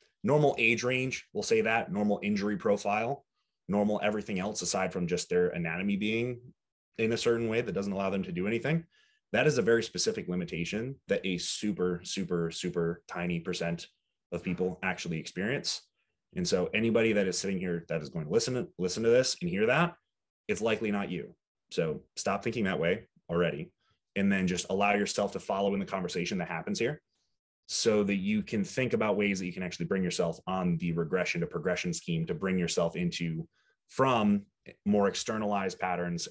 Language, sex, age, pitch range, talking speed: English, male, 30-49, 90-115 Hz, 190 wpm